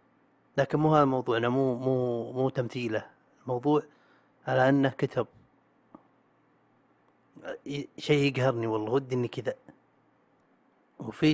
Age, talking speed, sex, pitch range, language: 30-49, 100 wpm, male, 130-165 Hz, Arabic